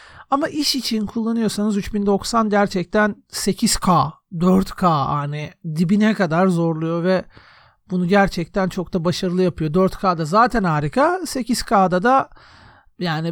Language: Turkish